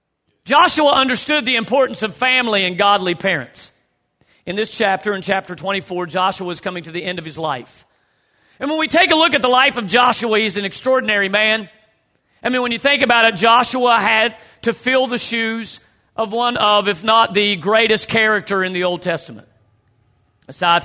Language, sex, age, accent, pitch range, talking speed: English, male, 40-59, American, 185-240 Hz, 185 wpm